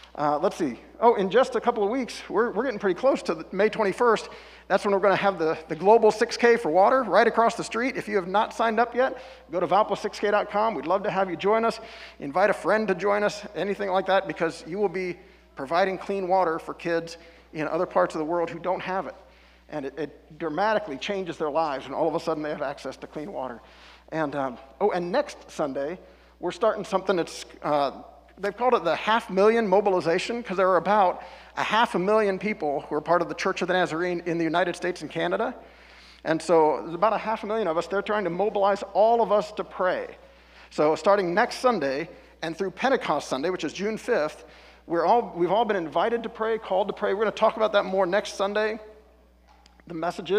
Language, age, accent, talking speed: English, 50-69, American, 225 wpm